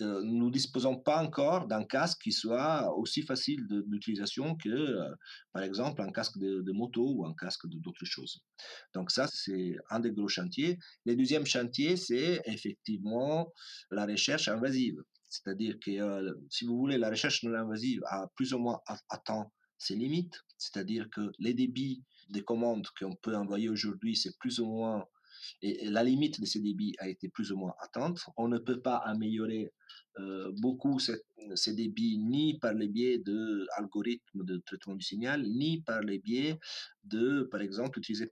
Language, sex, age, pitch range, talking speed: French, male, 40-59, 100-130 Hz, 180 wpm